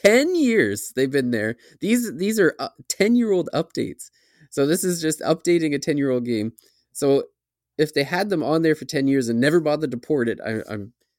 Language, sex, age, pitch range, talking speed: English, male, 20-39, 115-150 Hz, 215 wpm